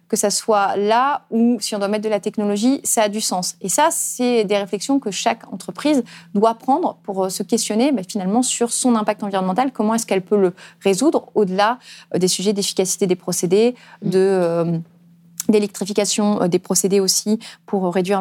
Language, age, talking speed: French, 30-49, 180 wpm